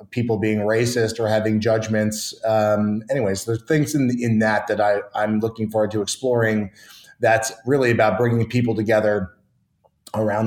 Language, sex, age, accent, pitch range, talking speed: English, male, 30-49, American, 110-125 Hz, 155 wpm